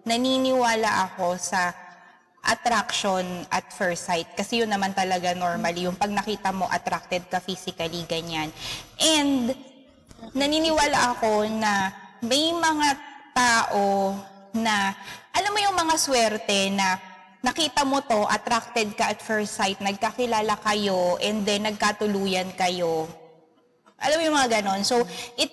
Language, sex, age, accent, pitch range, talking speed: English, female, 20-39, Filipino, 195-245 Hz, 130 wpm